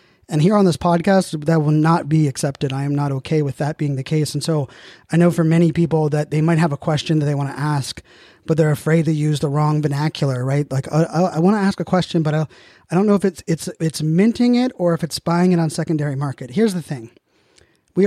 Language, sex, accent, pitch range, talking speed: English, male, American, 145-170 Hz, 260 wpm